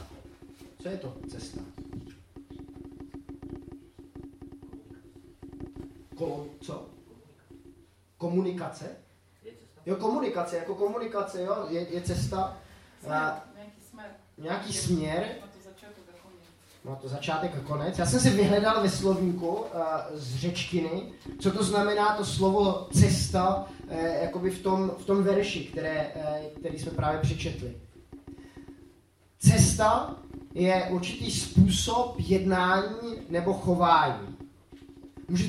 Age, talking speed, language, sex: 30-49, 90 wpm, Czech, male